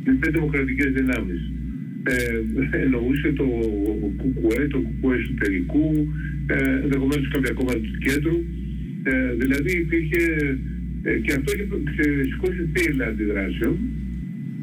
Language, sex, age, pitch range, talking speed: Greek, male, 60-79, 130-160 Hz, 110 wpm